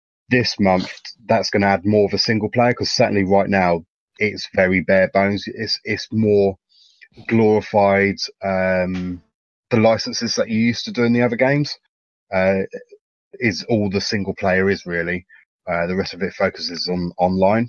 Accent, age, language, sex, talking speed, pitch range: British, 30-49, English, male, 175 wpm, 95-115 Hz